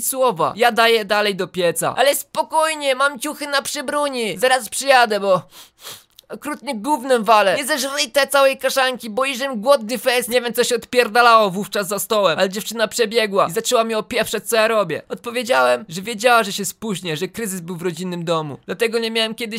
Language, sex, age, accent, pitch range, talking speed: Polish, male, 20-39, native, 185-240 Hz, 185 wpm